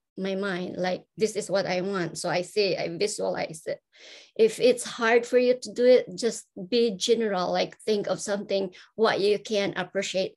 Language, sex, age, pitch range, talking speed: English, male, 20-39, 190-245 Hz, 190 wpm